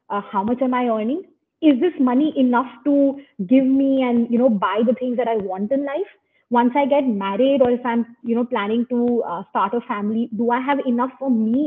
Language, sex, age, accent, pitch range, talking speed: English, female, 20-39, Indian, 225-285 Hz, 230 wpm